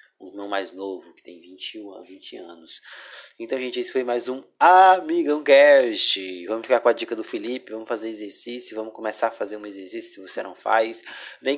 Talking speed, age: 200 wpm, 20-39